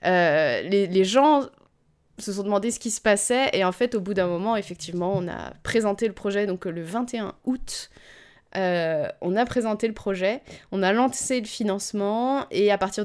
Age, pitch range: 20-39, 185-235 Hz